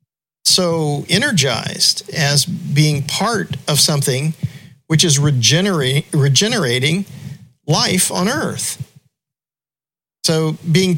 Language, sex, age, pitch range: English, male, 50-69, 140-170 Hz